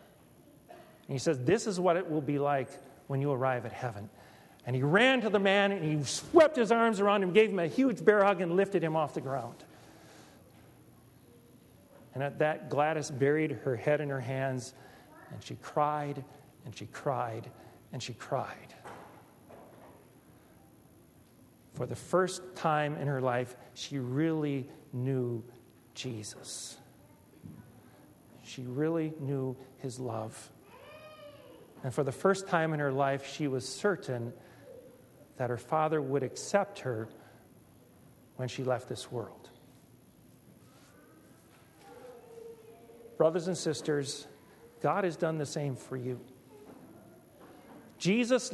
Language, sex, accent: English, male, American